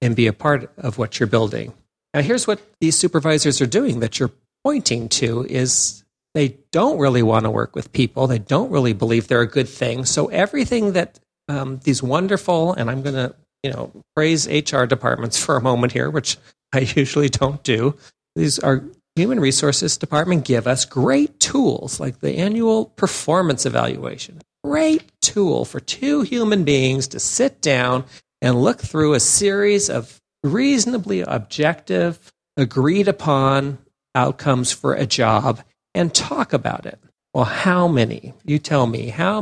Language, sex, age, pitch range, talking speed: English, male, 40-59, 120-160 Hz, 165 wpm